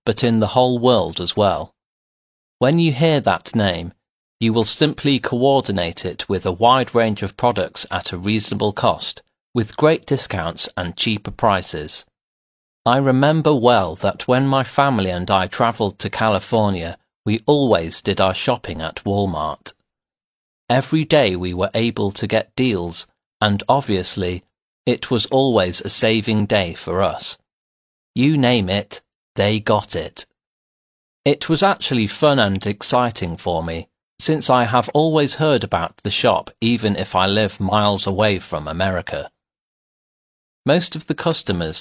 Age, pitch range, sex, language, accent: 40-59, 95-125 Hz, male, Chinese, British